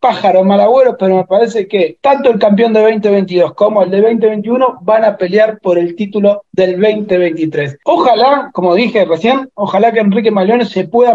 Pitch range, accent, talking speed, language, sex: 210-270 Hz, Argentinian, 180 wpm, Spanish, male